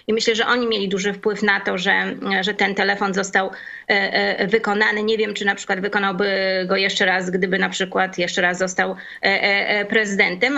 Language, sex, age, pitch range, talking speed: Polish, female, 20-39, 200-225 Hz, 200 wpm